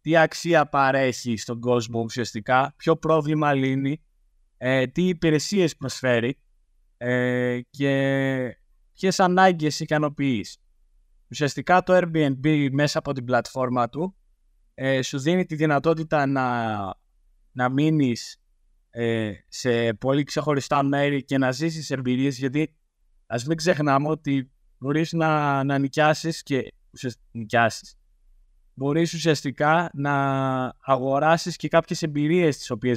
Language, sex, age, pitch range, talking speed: Greek, male, 20-39, 120-155 Hz, 115 wpm